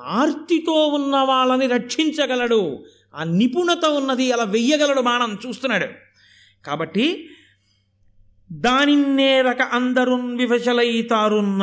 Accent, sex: native, male